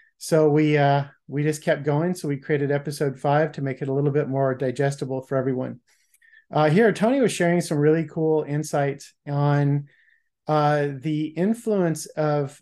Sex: male